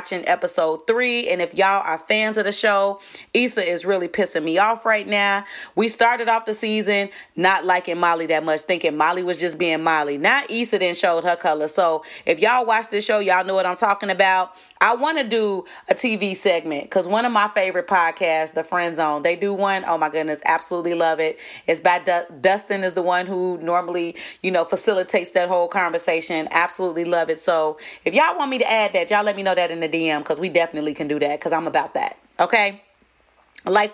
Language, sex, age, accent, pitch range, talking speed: English, female, 30-49, American, 175-210 Hz, 220 wpm